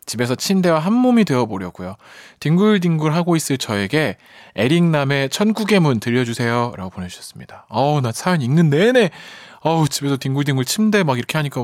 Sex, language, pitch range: male, Korean, 115-175 Hz